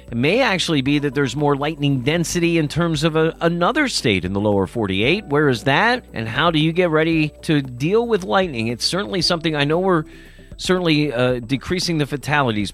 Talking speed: 200 wpm